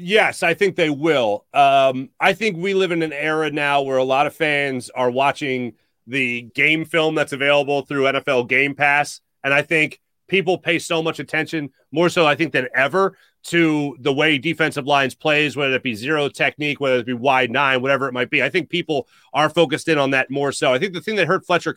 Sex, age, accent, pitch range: male, 30-49, American, 140-170 Hz